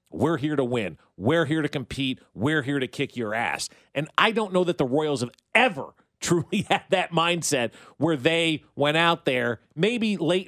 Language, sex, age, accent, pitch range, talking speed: English, male, 40-59, American, 140-200 Hz, 195 wpm